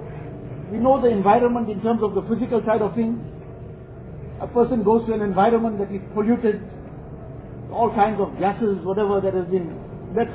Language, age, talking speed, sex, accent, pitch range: English, 50-69, 175 wpm, male, Indian, 185-230 Hz